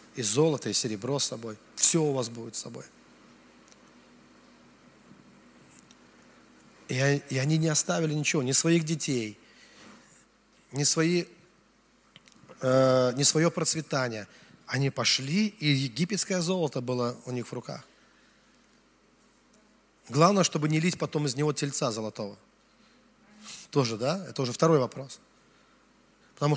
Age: 30-49